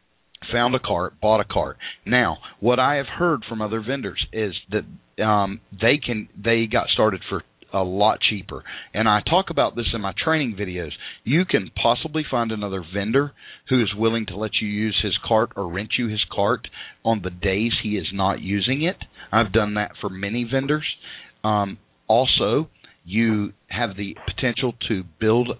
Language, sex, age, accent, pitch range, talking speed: English, male, 40-59, American, 100-120 Hz, 180 wpm